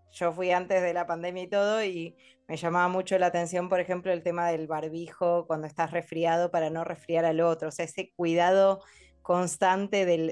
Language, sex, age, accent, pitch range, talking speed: Spanish, female, 20-39, Argentinian, 170-210 Hz, 200 wpm